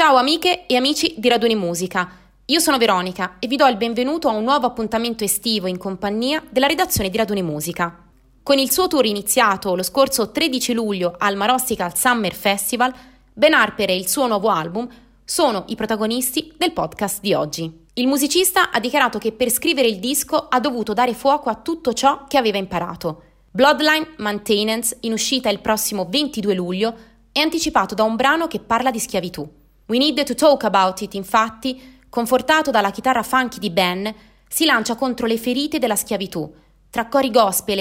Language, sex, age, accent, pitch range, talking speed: Italian, female, 20-39, native, 195-265 Hz, 180 wpm